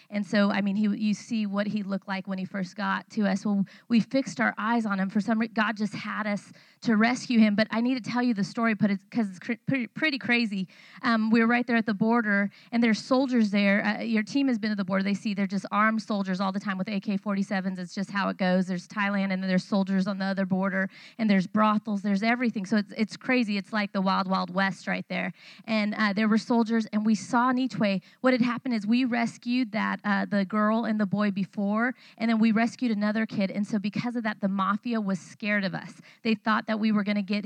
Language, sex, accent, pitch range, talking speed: English, female, American, 200-230 Hz, 255 wpm